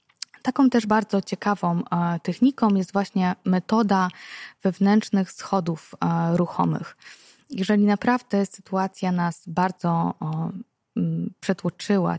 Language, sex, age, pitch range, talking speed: Polish, female, 20-39, 175-210 Hz, 85 wpm